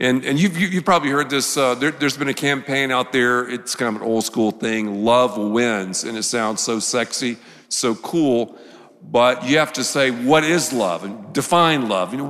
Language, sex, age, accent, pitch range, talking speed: English, male, 50-69, American, 135-175 Hz, 215 wpm